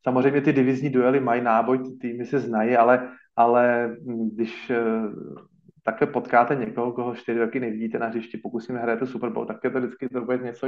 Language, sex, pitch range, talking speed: Slovak, male, 120-140 Hz, 185 wpm